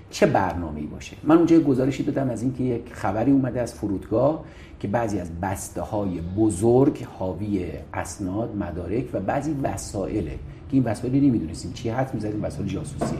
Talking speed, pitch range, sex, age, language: 155 wpm, 90-135 Hz, male, 50-69, Persian